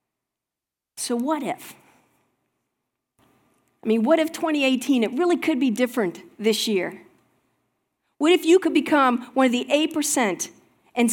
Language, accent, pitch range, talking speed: English, American, 215-295 Hz, 140 wpm